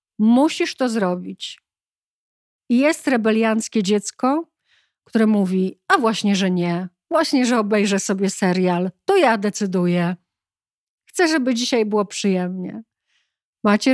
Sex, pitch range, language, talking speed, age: female, 200-255 Hz, Polish, 115 wpm, 50-69